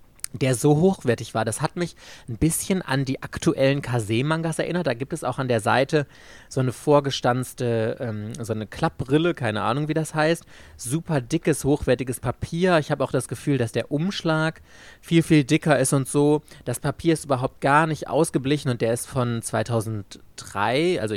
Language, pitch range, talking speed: German, 115-150 Hz, 185 wpm